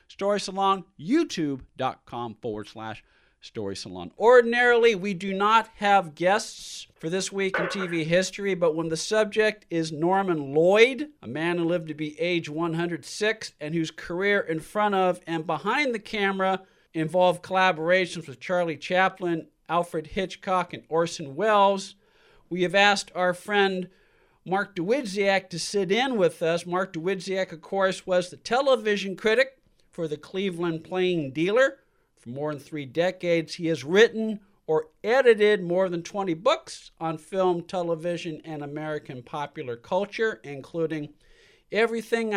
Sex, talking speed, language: male, 145 wpm, English